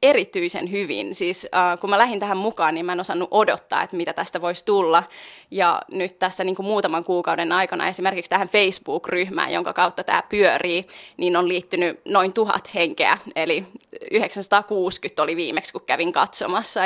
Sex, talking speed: female, 165 wpm